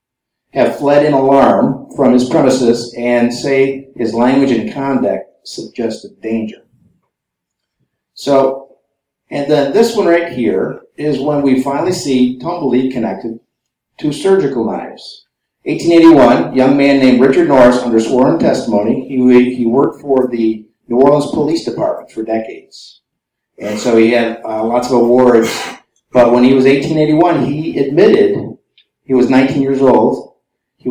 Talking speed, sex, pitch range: 140 wpm, male, 115-140 Hz